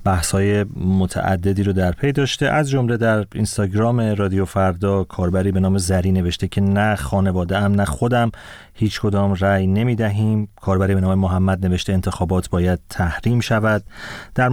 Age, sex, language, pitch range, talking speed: 30-49, male, Persian, 95-115 Hz, 155 wpm